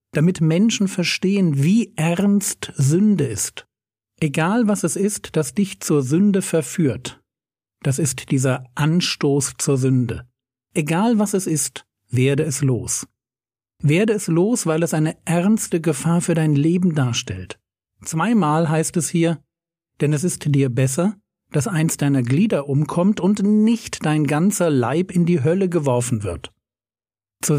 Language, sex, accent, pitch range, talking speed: German, male, German, 130-180 Hz, 145 wpm